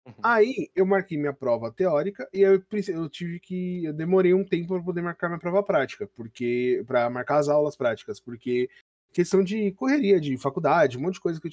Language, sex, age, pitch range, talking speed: Portuguese, male, 20-39, 155-195 Hz, 205 wpm